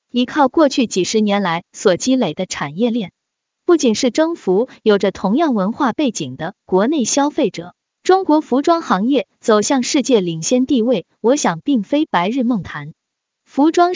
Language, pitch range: Chinese, 205-290 Hz